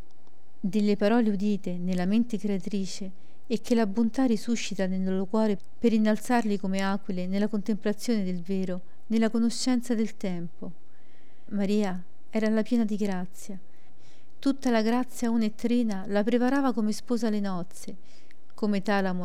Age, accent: 40-59, native